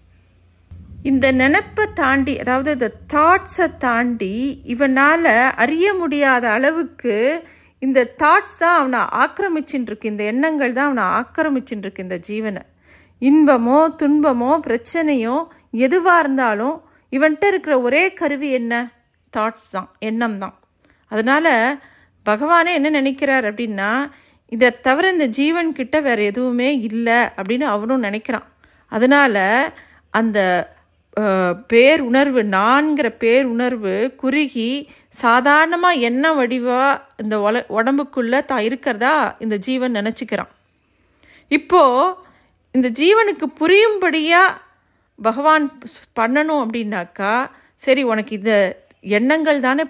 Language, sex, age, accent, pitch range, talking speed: Tamil, female, 50-69, native, 230-300 Hz, 90 wpm